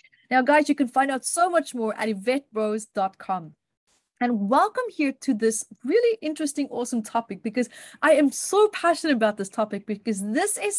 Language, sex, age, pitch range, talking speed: English, female, 30-49, 210-290 Hz, 170 wpm